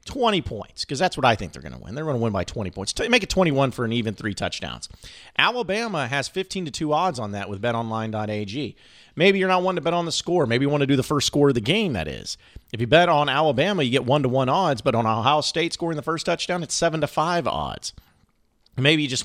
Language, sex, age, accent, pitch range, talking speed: English, male, 40-59, American, 115-155 Hz, 265 wpm